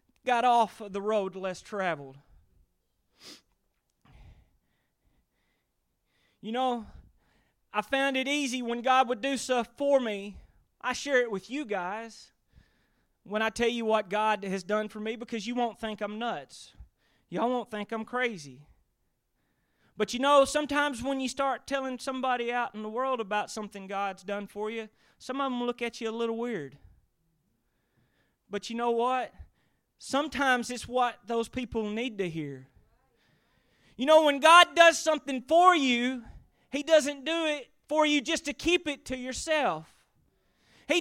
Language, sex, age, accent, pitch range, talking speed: English, male, 30-49, American, 215-290 Hz, 155 wpm